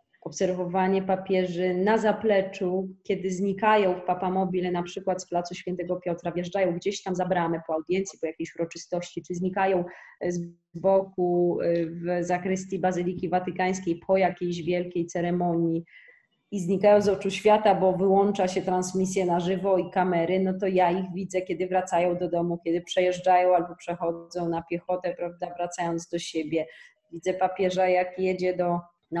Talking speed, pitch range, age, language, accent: 150 wpm, 170-185 Hz, 20-39, Polish, native